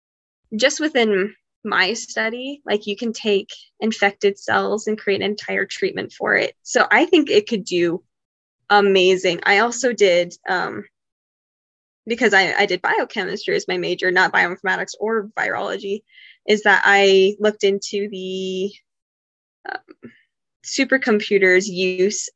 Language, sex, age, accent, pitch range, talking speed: English, female, 10-29, American, 190-220 Hz, 130 wpm